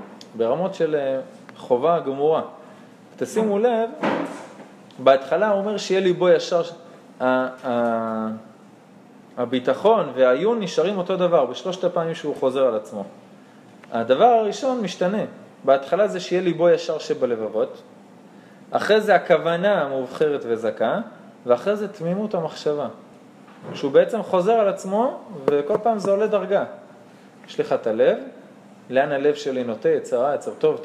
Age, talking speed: 20-39, 125 wpm